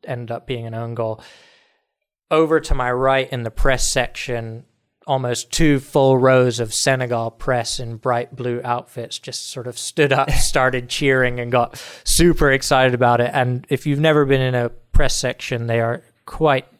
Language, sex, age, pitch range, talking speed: English, male, 20-39, 120-135 Hz, 180 wpm